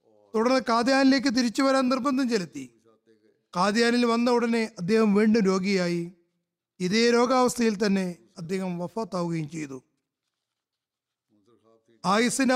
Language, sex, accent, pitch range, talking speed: Malayalam, male, native, 175-265 Hz, 90 wpm